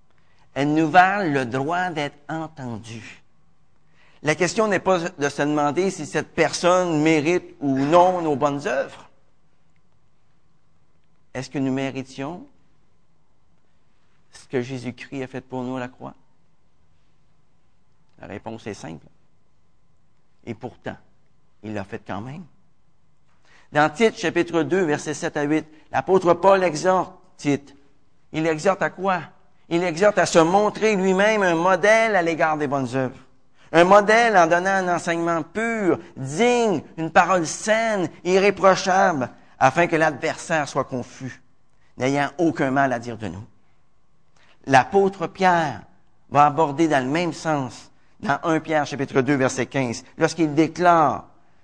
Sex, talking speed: male, 135 wpm